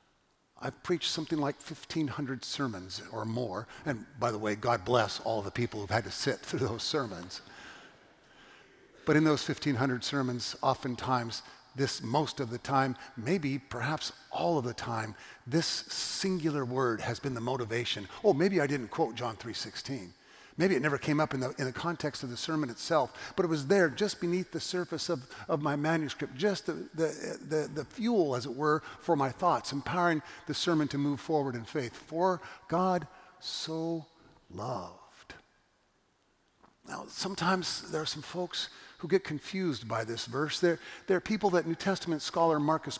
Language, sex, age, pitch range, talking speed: English, male, 50-69, 130-170 Hz, 175 wpm